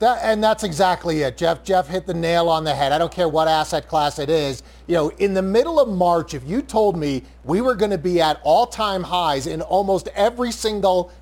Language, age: English, 40-59